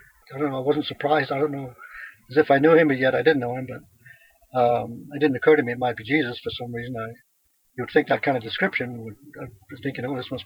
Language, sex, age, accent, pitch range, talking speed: English, male, 60-79, American, 125-155 Hz, 270 wpm